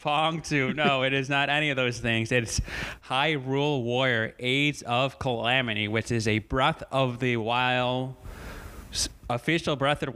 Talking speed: 165 wpm